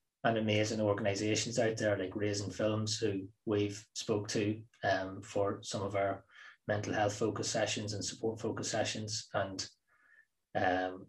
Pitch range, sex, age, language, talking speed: 100-135 Hz, male, 20-39, English, 145 wpm